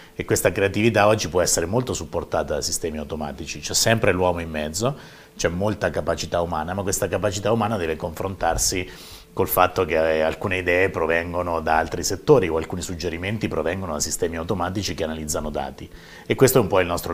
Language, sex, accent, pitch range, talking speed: Italian, male, native, 80-100 Hz, 180 wpm